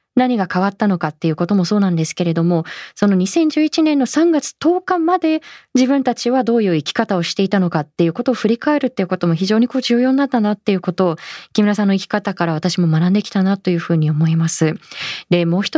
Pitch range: 185-260 Hz